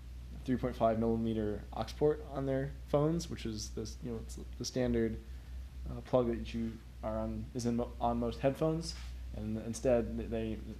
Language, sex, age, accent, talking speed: English, male, 20-39, American, 165 wpm